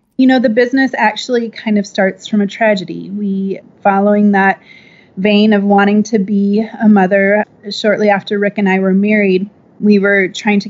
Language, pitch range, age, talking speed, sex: English, 195-220 Hz, 30-49, 180 wpm, female